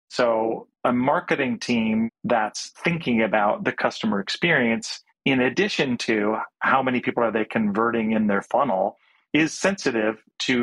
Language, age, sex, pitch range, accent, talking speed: English, 40-59, male, 110-130 Hz, American, 140 wpm